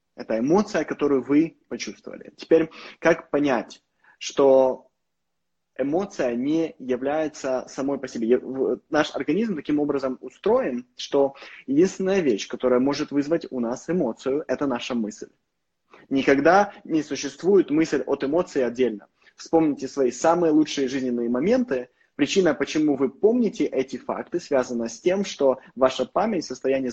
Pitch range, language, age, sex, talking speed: 125-155 Hz, Russian, 20-39, male, 130 wpm